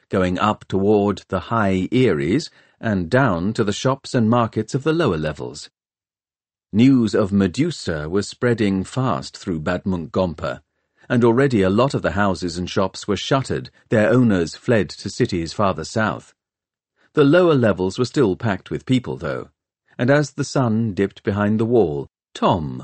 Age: 40-59